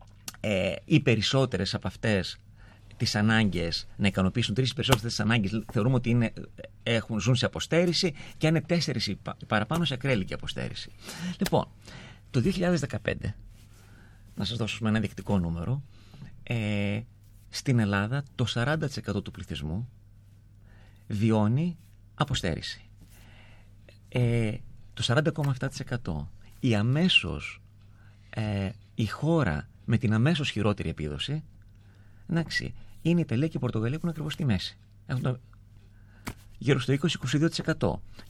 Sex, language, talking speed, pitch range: male, Greek, 115 wpm, 100-135 Hz